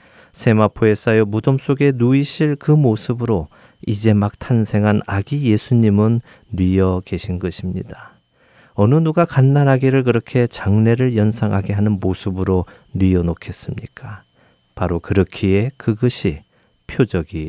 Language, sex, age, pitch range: Korean, male, 40-59, 95-130 Hz